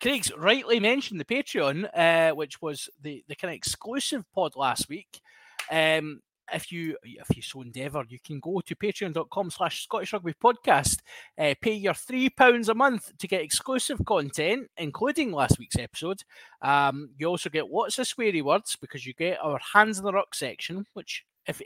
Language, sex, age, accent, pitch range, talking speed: English, male, 20-39, British, 145-205 Hz, 175 wpm